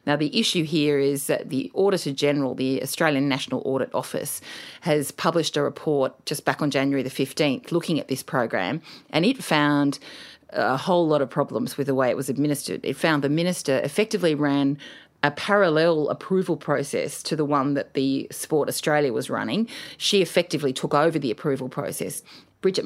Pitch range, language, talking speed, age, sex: 135-155 Hz, English, 180 wpm, 40-59, female